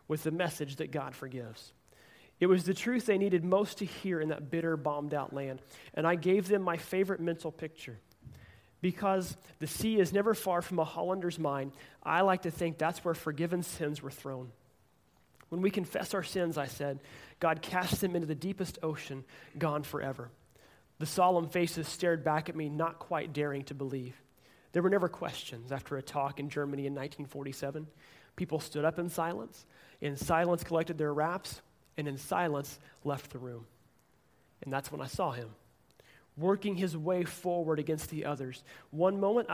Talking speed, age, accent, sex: 180 wpm, 30-49, American, male